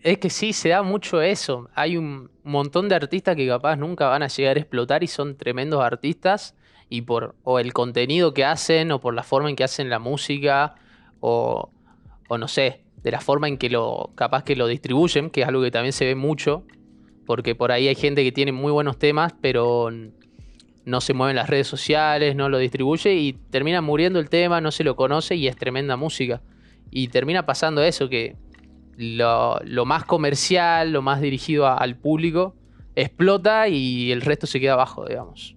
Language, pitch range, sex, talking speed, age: Spanish, 125-150 Hz, male, 195 wpm, 20-39